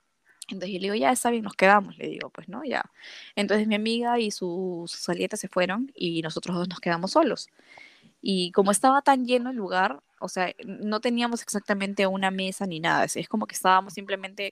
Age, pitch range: 10-29, 180-240 Hz